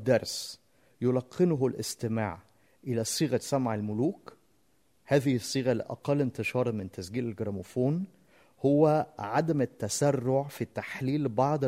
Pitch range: 115-150 Hz